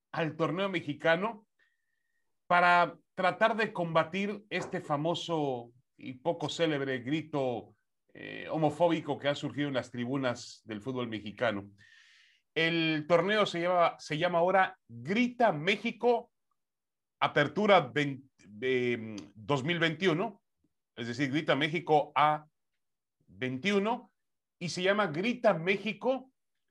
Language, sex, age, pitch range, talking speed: Spanish, male, 40-59, 120-180 Hz, 100 wpm